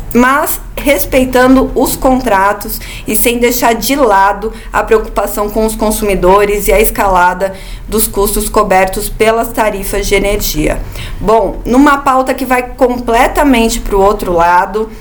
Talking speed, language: 135 wpm, Portuguese